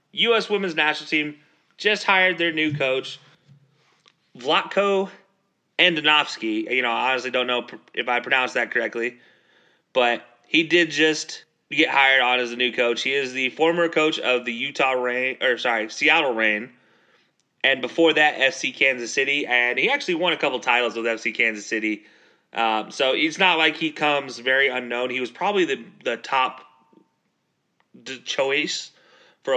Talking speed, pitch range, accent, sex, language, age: 160 wpm, 120-155 Hz, American, male, English, 30-49